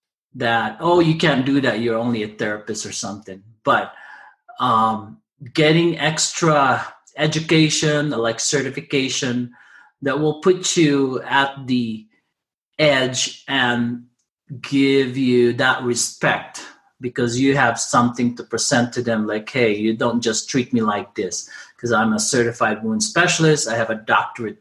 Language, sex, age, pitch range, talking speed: English, male, 30-49, 115-150 Hz, 140 wpm